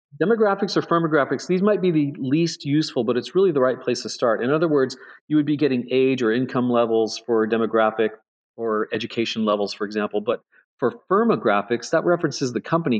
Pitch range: 110-145 Hz